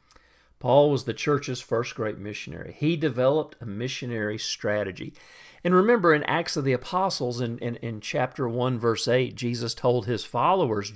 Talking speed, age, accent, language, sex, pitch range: 165 wpm, 50-69, American, English, male, 115-150 Hz